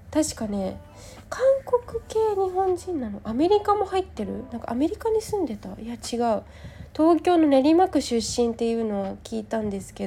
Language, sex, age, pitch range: Japanese, female, 20-39, 200-275 Hz